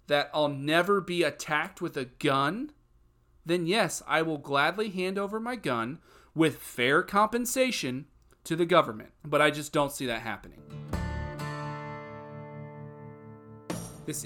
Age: 30-49